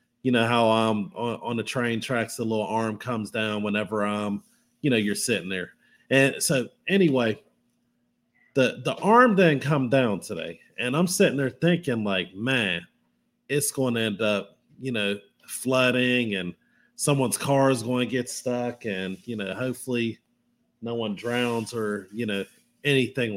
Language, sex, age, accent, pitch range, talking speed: English, male, 30-49, American, 110-135 Hz, 165 wpm